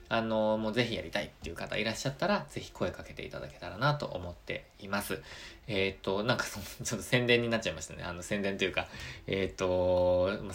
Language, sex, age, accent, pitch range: Japanese, male, 20-39, native, 90-120 Hz